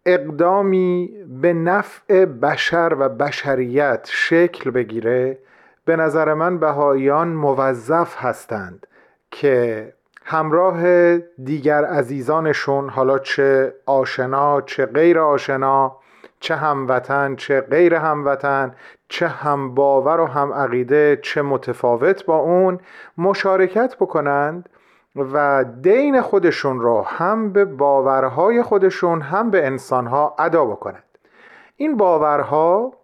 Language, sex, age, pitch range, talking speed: Persian, male, 40-59, 135-180 Hz, 100 wpm